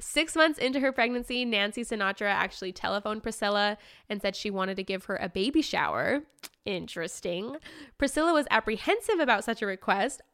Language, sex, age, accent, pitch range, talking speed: English, female, 10-29, American, 190-235 Hz, 165 wpm